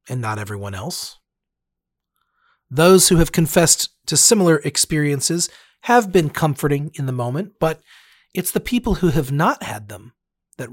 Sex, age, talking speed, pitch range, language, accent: male, 40-59, 150 wpm, 130-175 Hz, English, American